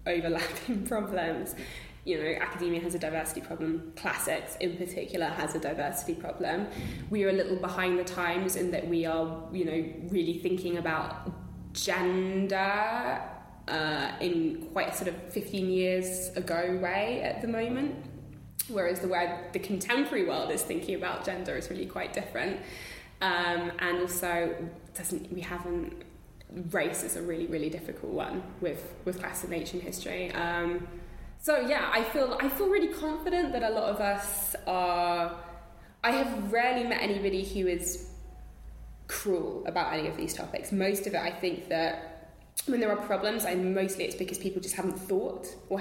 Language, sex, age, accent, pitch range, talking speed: English, female, 10-29, British, 170-200 Hz, 165 wpm